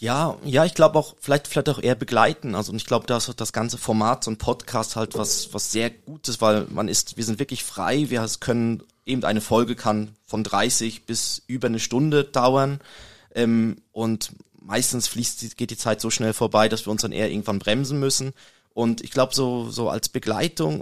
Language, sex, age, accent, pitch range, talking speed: German, male, 20-39, German, 110-125 Hz, 210 wpm